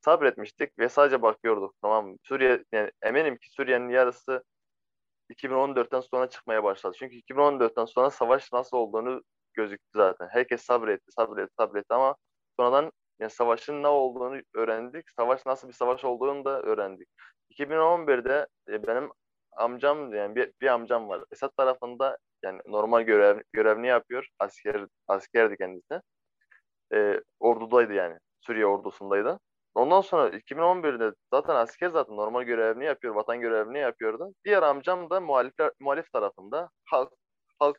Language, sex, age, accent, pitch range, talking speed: Turkish, male, 20-39, native, 115-145 Hz, 135 wpm